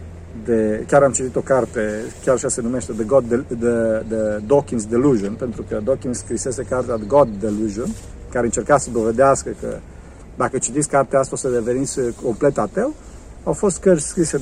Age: 50-69